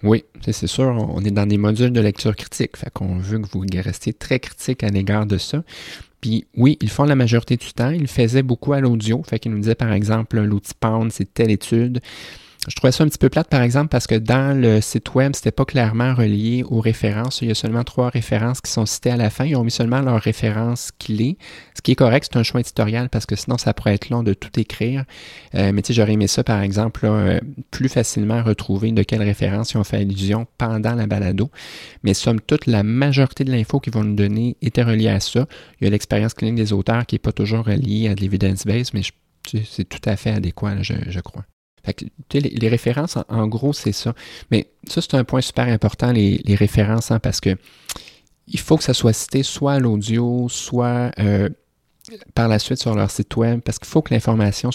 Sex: male